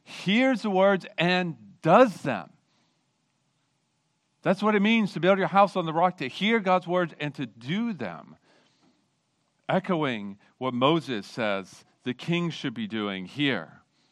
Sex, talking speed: male, 150 wpm